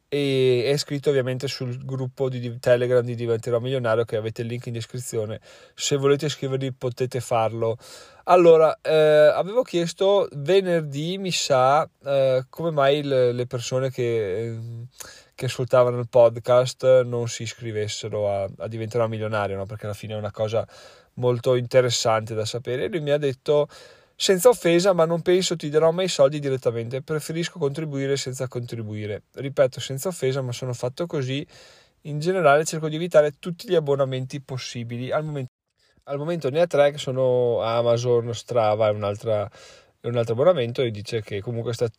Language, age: Italian, 20-39